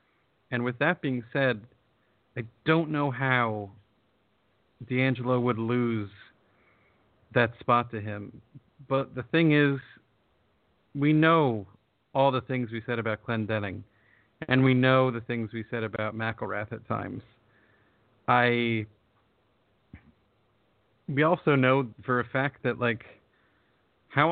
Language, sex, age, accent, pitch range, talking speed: English, male, 40-59, American, 115-135 Hz, 125 wpm